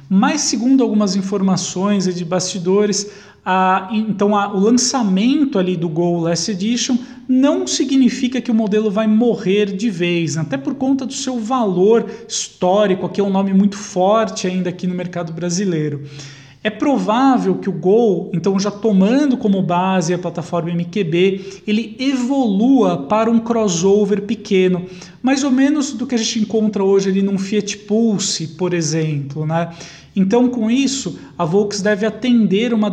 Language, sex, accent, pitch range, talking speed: Portuguese, male, Brazilian, 185-225 Hz, 150 wpm